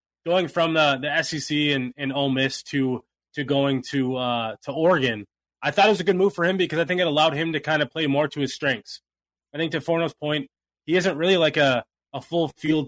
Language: English